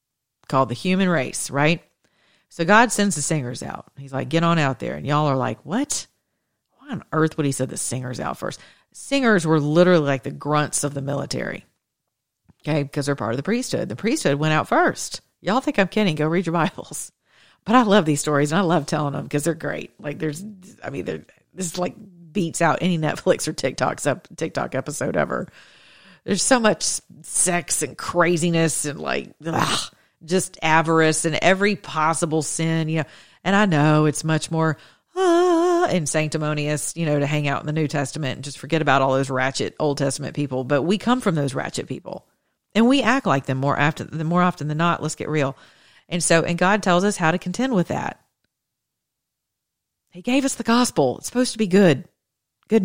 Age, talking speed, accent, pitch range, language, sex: 40-59, 205 wpm, American, 145-185 Hz, English, female